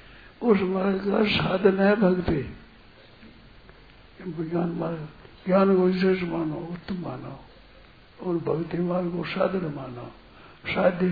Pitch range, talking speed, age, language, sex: 155-190 Hz, 115 wpm, 60-79, Hindi, male